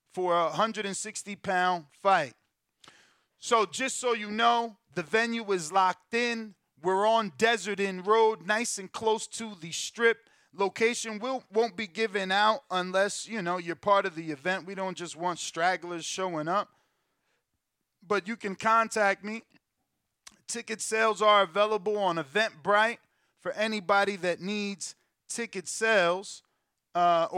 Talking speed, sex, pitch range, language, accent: 140 wpm, male, 165-210 Hz, English, American